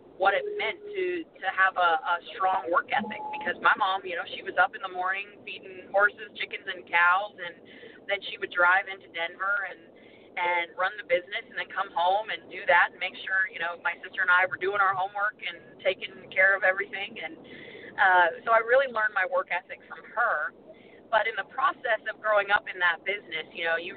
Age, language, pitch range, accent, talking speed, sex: 30-49, English, 175-215 Hz, American, 220 wpm, female